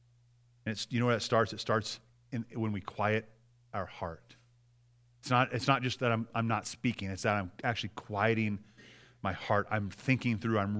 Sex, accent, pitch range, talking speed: male, American, 115-140 Hz, 200 wpm